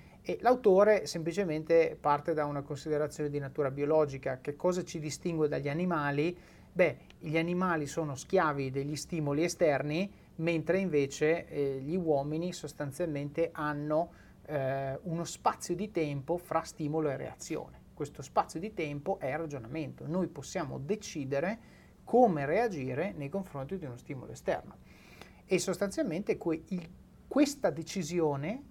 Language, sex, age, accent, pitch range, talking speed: Italian, male, 30-49, native, 145-180 Hz, 130 wpm